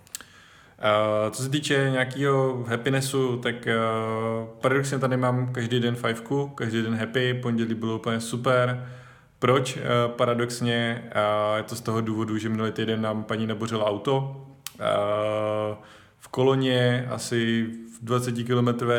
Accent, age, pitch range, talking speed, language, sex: native, 20-39, 110-120 Hz, 135 wpm, Czech, male